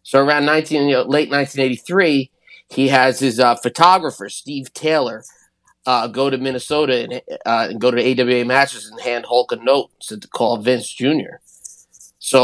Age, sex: 20-39, male